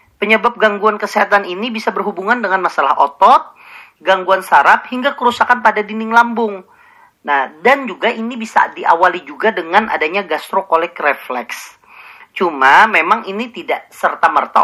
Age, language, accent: 40-59, Indonesian, native